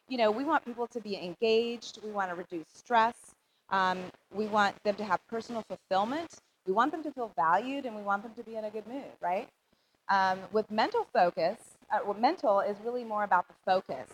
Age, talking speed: 30-49, 215 wpm